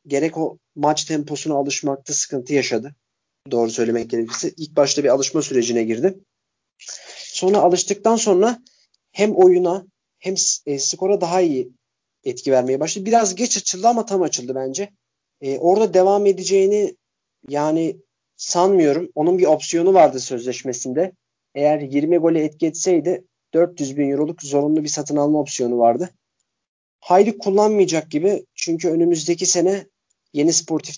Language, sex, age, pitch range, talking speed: Turkish, male, 40-59, 130-180 Hz, 130 wpm